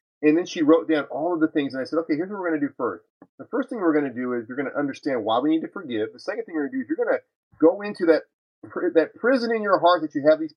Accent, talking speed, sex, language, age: American, 340 wpm, male, English, 30-49